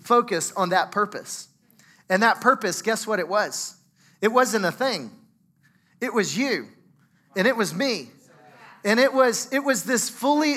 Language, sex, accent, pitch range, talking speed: English, male, American, 190-230 Hz, 165 wpm